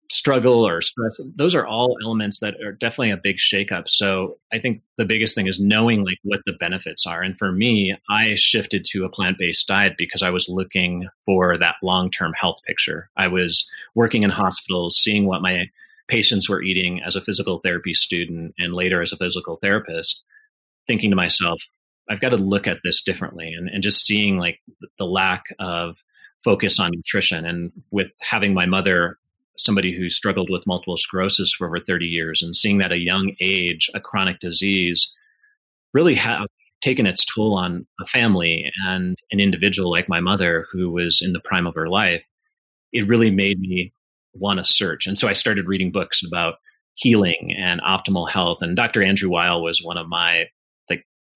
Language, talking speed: English, 185 wpm